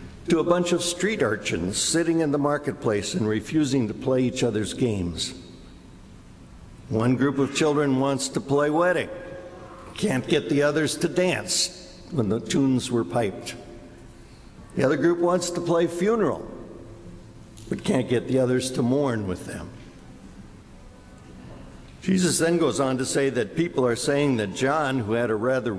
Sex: male